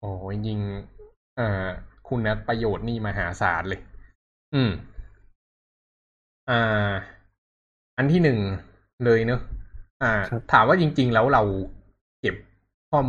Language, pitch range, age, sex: Thai, 95-115 Hz, 20-39, male